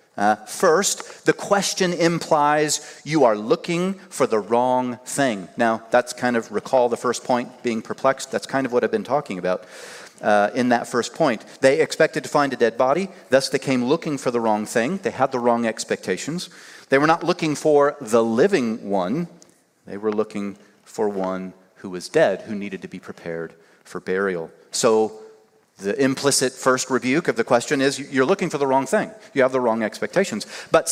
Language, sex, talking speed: English, male, 190 wpm